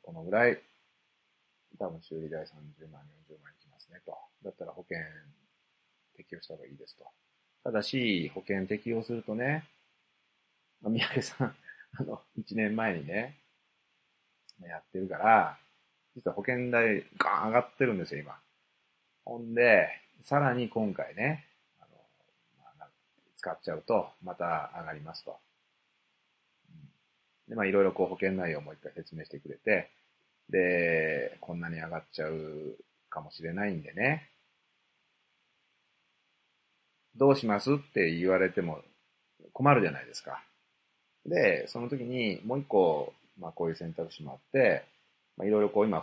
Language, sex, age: Japanese, male, 40-59